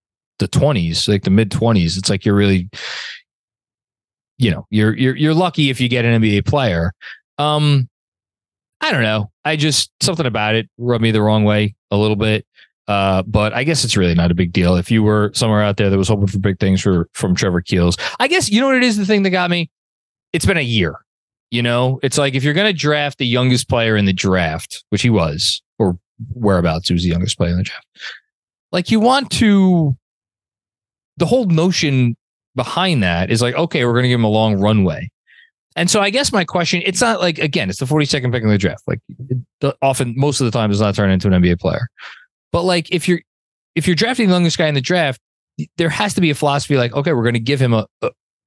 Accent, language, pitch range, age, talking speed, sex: American, English, 100-150 Hz, 20-39, 225 wpm, male